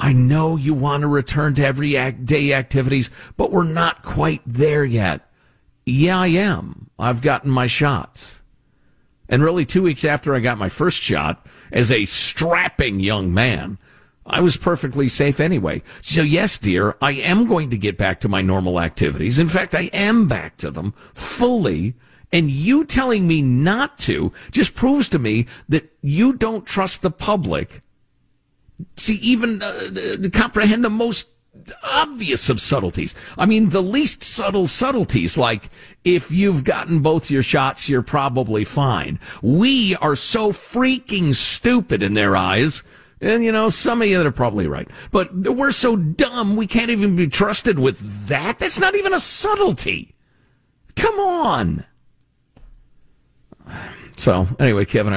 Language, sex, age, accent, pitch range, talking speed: English, male, 50-69, American, 125-205 Hz, 155 wpm